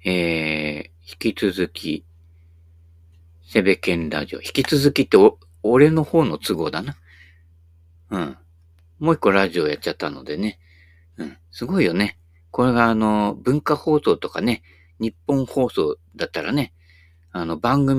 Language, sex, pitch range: Japanese, male, 85-135 Hz